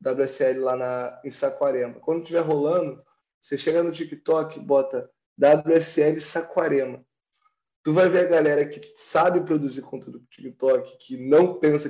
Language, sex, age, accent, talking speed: Portuguese, male, 20-39, Brazilian, 155 wpm